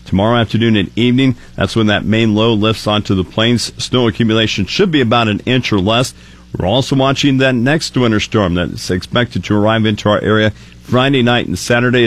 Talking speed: 200 wpm